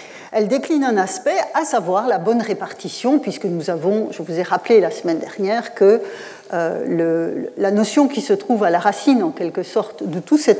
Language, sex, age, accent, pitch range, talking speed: French, female, 40-59, French, 190-265 Hz, 200 wpm